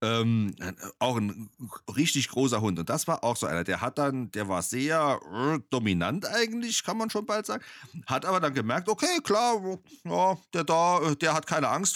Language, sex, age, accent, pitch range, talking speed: German, male, 40-59, German, 115-180 Hz, 200 wpm